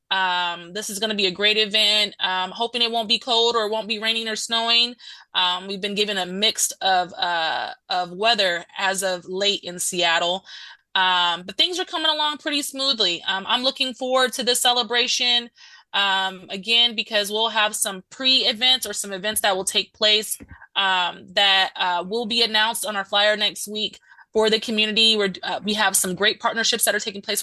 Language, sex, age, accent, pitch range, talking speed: English, female, 20-39, American, 195-235 Hz, 200 wpm